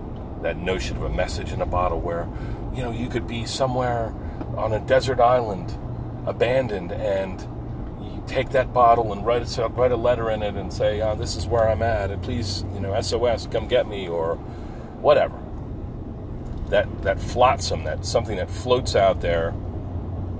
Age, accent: 40-59, American